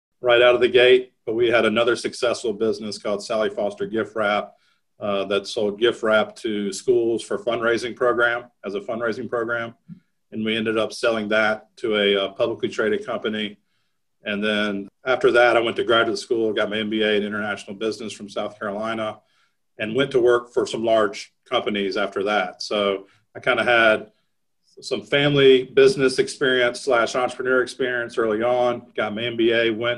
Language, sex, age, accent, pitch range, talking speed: English, male, 40-59, American, 105-120 Hz, 175 wpm